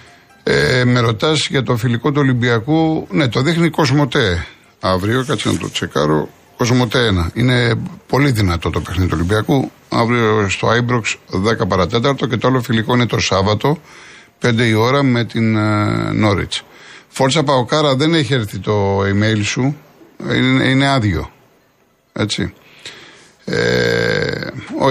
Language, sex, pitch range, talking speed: Greek, male, 105-135 Hz, 140 wpm